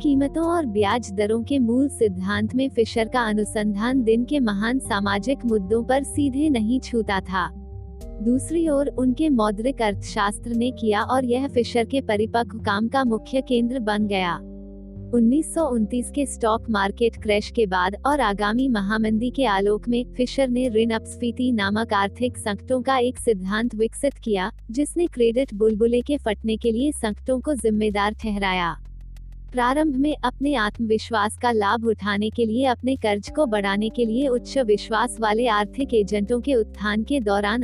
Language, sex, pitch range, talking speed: Hindi, female, 210-255 Hz, 160 wpm